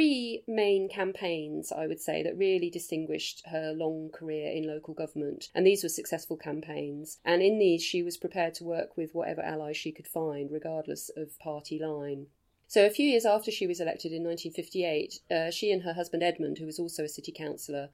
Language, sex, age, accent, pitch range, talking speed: English, female, 30-49, British, 150-175 Hz, 200 wpm